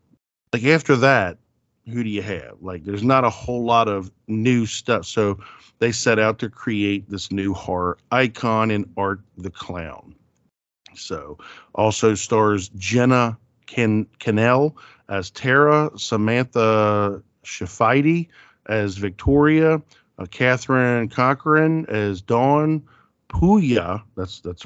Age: 40-59